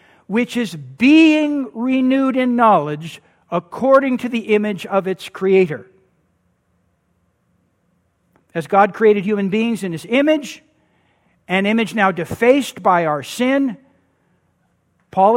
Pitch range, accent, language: 200-260 Hz, American, English